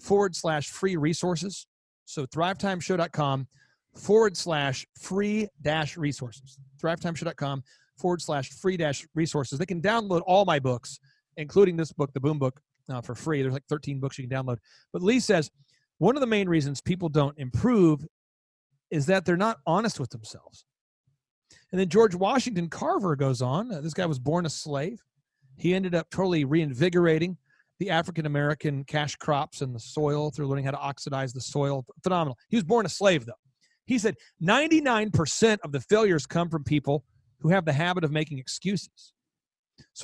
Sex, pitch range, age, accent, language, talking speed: male, 140-195 Hz, 40-59, American, English, 170 wpm